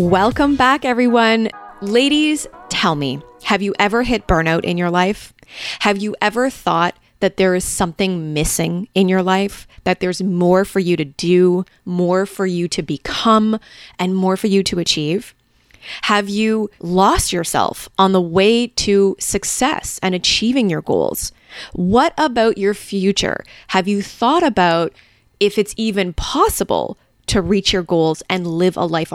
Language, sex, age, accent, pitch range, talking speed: English, female, 20-39, American, 175-220 Hz, 160 wpm